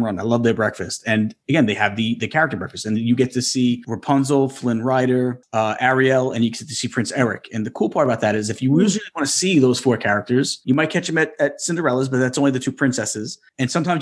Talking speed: 260 wpm